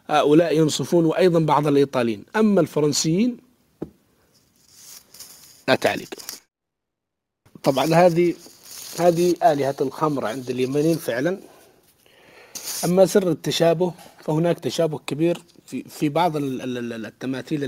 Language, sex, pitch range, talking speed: English, male, 140-165 Hz, 100 wpm